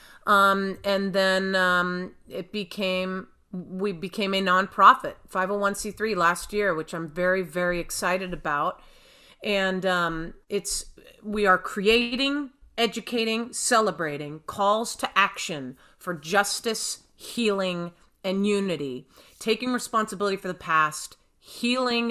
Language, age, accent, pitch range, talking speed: English, 40-59, American, 170-200 Hz, 110 wpm